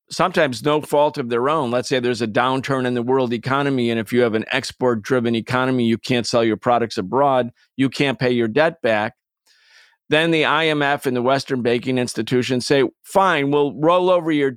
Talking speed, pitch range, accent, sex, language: 200 wpm, 125-150 Hz, American, male, English